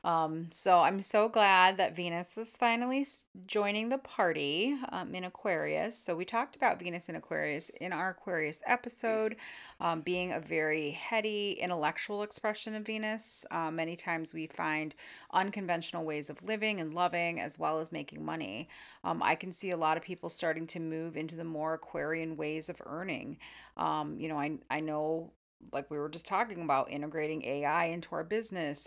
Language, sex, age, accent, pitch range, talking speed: English, female, 30-49, American, 155-190 Hz, 180 wpm